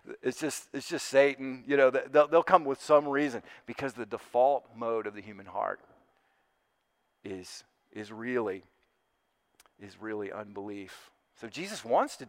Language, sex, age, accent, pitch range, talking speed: English, male, 40-59, American, 120-150 Hz, 150 wpm